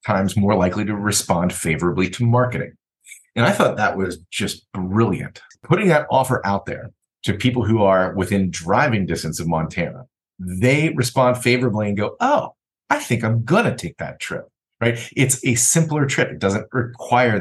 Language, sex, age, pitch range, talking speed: English, male, 30-49, 95-125 Hz, 175 wpm